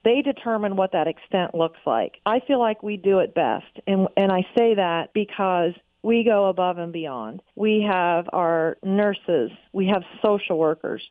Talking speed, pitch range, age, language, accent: 180 wpm, 180-215 Hz, 40-59, English, American